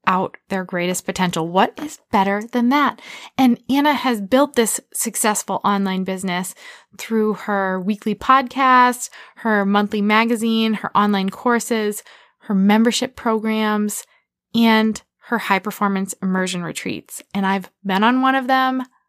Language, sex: English, female